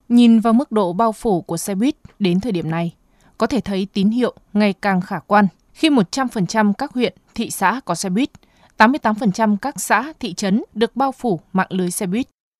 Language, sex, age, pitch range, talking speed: Vietnamese, female, 20-39, 185-230 Hz, 205 wpm